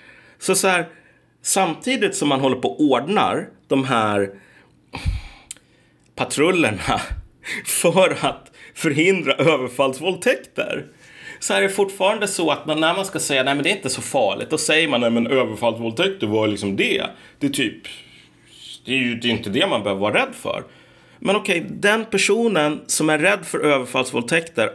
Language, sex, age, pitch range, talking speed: Swedish, male, 30-49, 110-165 Hz, 165 wpm